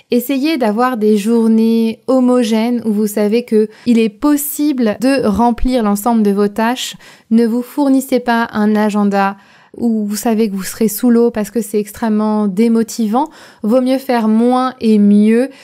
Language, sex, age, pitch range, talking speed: French, female, 20-39, 205-245 Hz, 165 wpm